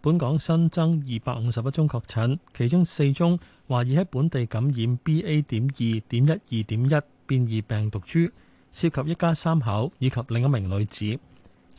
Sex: male